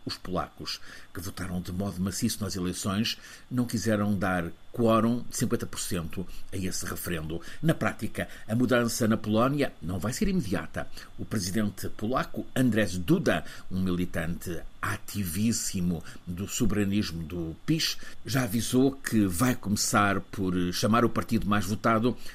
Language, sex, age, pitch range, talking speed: Portuguese, male, 50-69, 95-125 Hz, 135 wpm